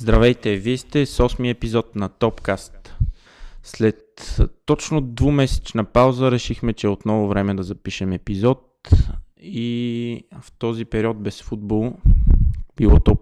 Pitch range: 100-115 Hz